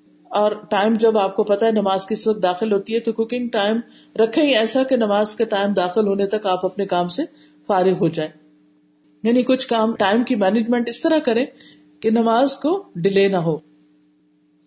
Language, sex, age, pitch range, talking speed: Urdu, female, 50-69, 185-245 Hz, 160 wpm